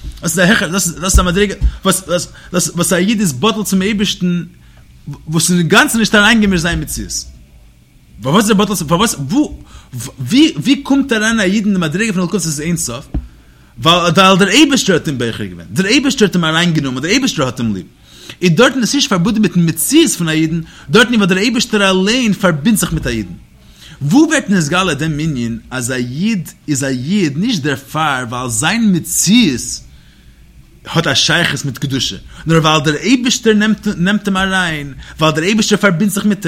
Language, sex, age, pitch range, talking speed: English, male, 30-49, 140-210 Hz, 115 wpm